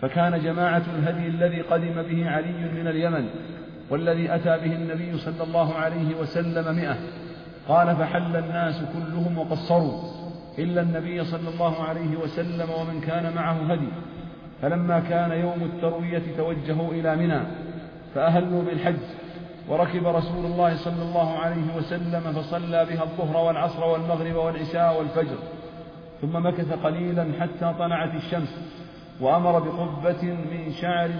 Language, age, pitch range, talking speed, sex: Arabic, 40-59, 165-170 Hz, 125 wpm, male